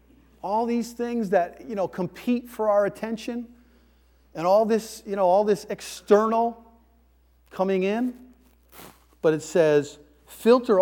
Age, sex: 40-59, male